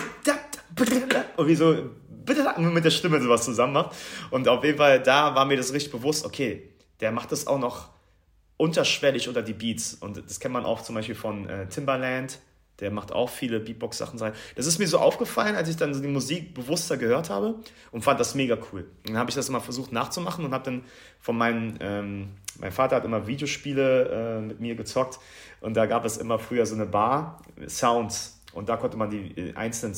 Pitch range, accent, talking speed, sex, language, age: 105-135 Hz, German, 200 wpm, male, German, 30-49